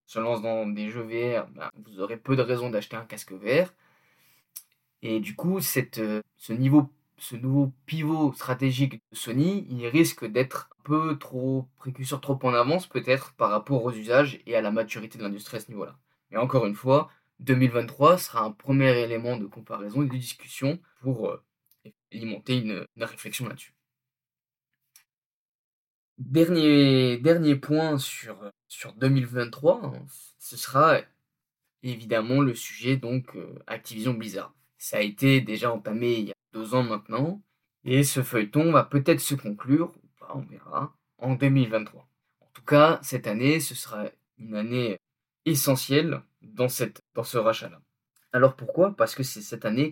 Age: 20-39